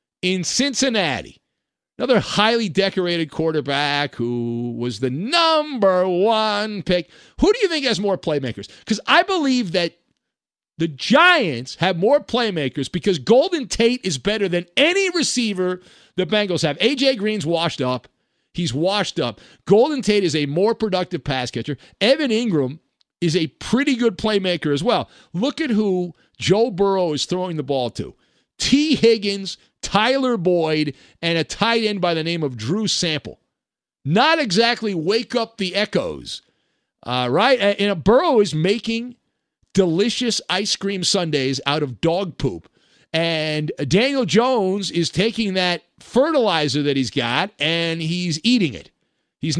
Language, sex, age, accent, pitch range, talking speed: English, male, 50-69, American, 155-225 Hz, 150 wpm